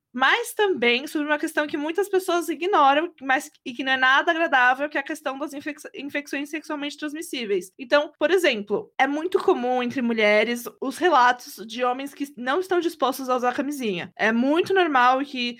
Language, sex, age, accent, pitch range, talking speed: Portuguese, female, 20-39, Brazilian, 245-325 Hz, 185 wpm